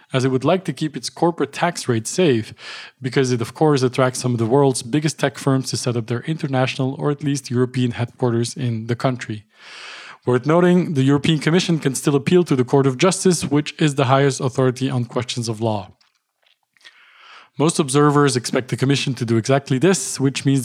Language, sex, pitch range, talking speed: English, male, 125-150 Hz, 200 wpm